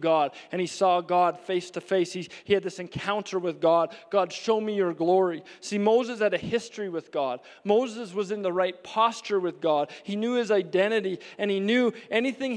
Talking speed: 205 wpm